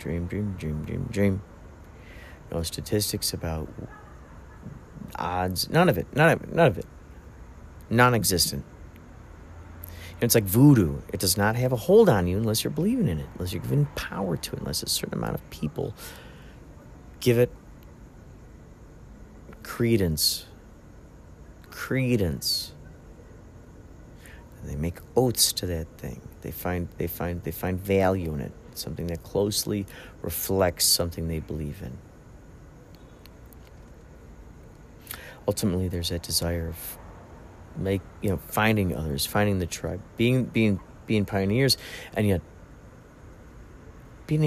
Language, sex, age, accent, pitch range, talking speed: English, male, 40-59, American, 80-105 Hz, 130 wpm